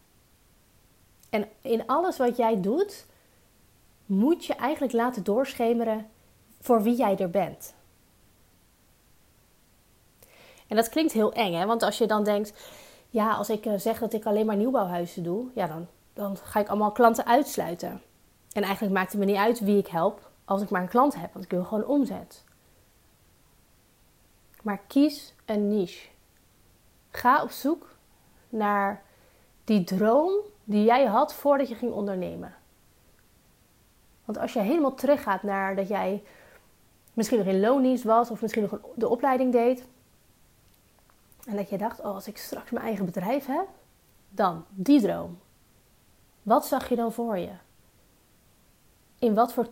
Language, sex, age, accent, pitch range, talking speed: Dutch, female, 30-49, Dutch, 195-245 Hz, 150 wpm